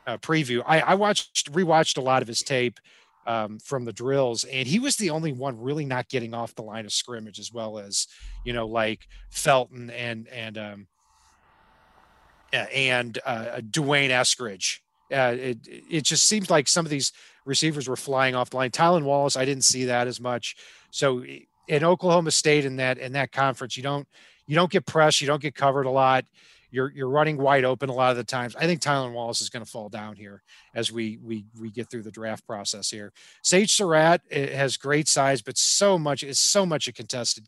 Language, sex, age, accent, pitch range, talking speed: English, male, 40-59, American, 120-145 Hz, 210 wpm